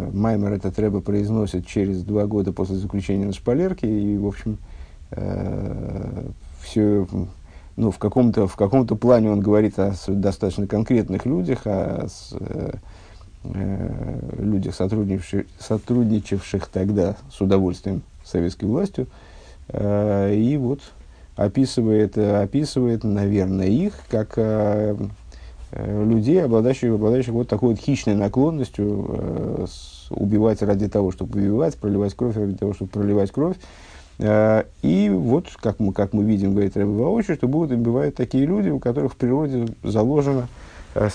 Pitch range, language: 100-120 Hz, Russian